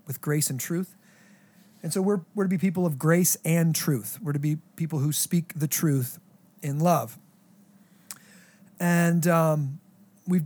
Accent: American